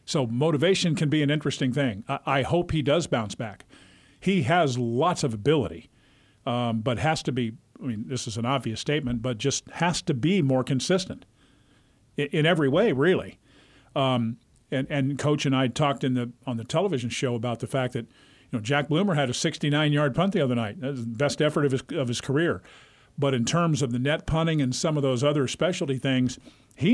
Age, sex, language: 50-69, male, English